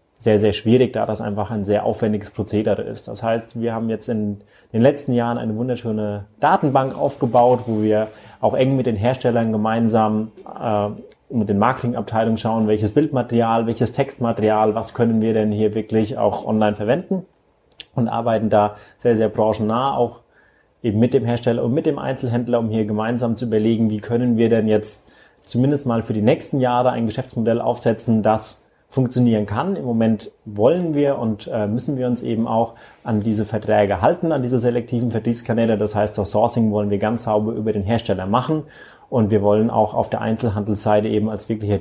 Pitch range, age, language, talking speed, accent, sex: 105-120 Hz, 30-49, German, 180 wpm, German, male